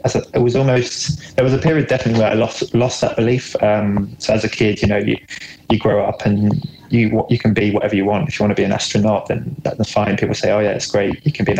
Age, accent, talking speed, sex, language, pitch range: 20-39, British, 285 wpm, male, English, 100-115 Hz